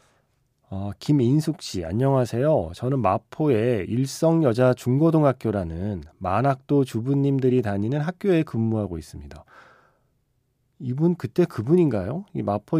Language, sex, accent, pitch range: Korean, male, native, 110-145 Hz